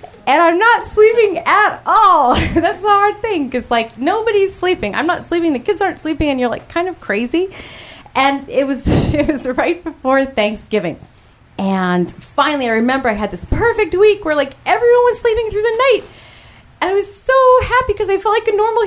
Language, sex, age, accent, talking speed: English, female, 30-49, American, 200 wpm